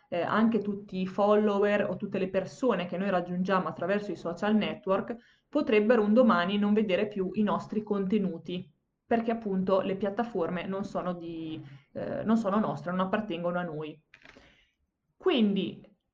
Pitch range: 180-215 Hz